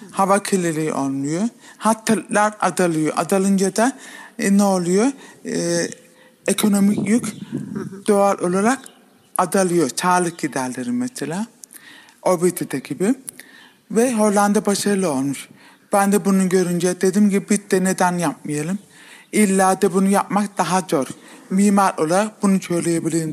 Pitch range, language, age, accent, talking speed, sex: 180-215 Hz, Turkish, 50-69, native, 120 wpm, male